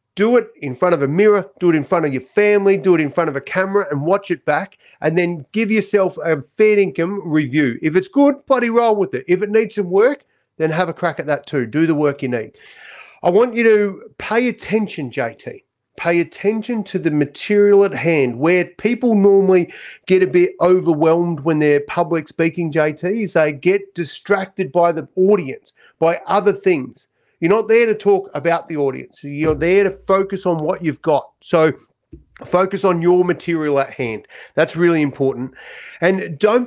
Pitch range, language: 155-200 Hz, English